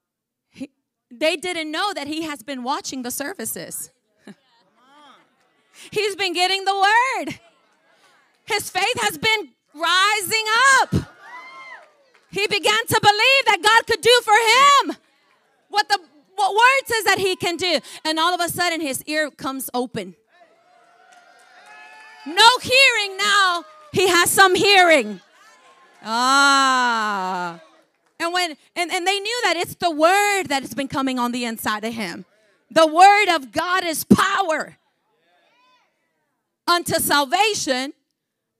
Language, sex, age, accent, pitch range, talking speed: English, female, 30-49, American, 275-390 Hz, 130 wpm